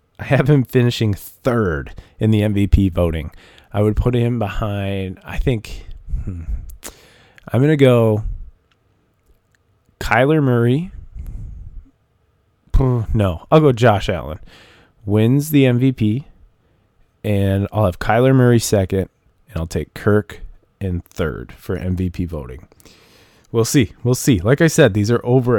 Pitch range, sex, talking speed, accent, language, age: 95-125 Hz, male, 130 wpm, American, English, 20-39